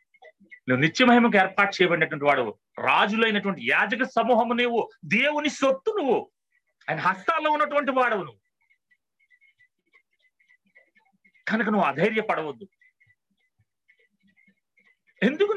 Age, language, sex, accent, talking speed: 30-49, Telugu, male, native, 75 wpm